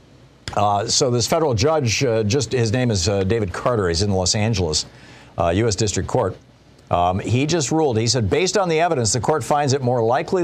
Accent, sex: American, male